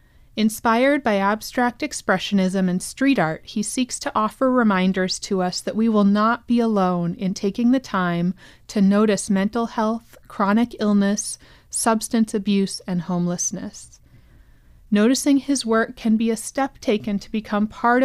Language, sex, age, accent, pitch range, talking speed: English, female, 30-49, American, 195-235 Hz, 150 wpm